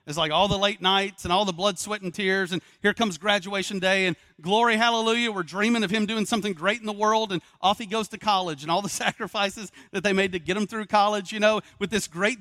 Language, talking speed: English, 260 wpm